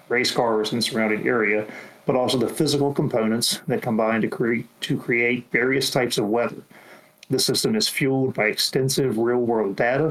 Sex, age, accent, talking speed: male, 40-59, American, 170 wpm